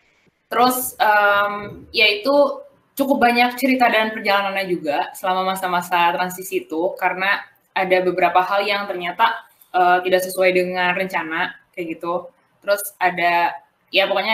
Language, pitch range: Indonesian, 180-230 Hz